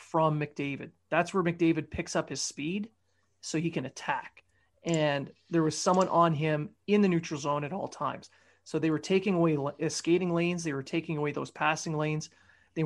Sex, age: male, 30-49